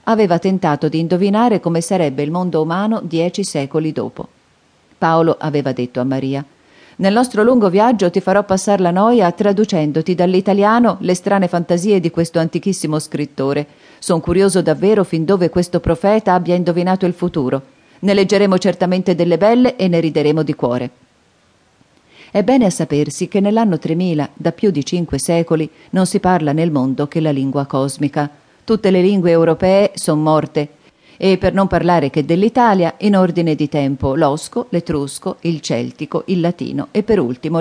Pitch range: 150-190 Hz